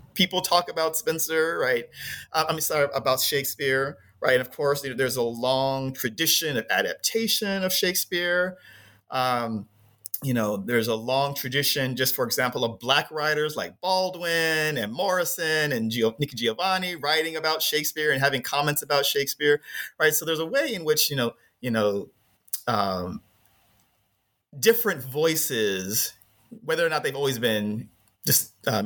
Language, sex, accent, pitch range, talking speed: English, male, American, 115-160 Hz, 150 wpm